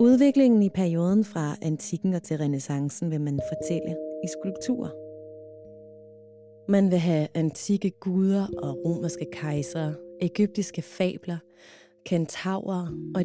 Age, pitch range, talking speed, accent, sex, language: 30-49, 155-210 Hz, 115 wpm, native, female, Danish